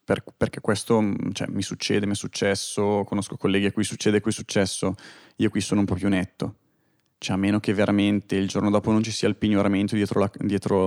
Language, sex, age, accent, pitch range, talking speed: Italian, male, 20-39, native, 100-115 Hz, 220 wpm